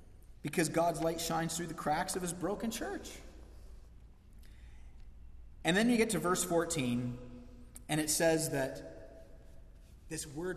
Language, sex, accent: English, male, American